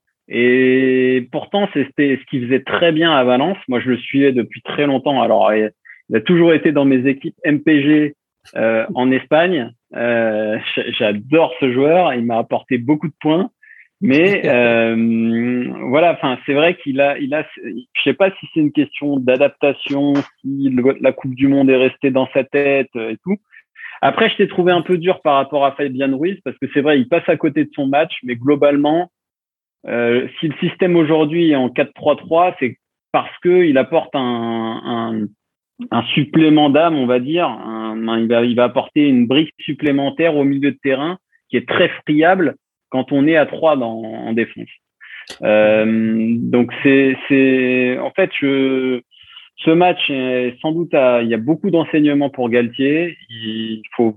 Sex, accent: male, French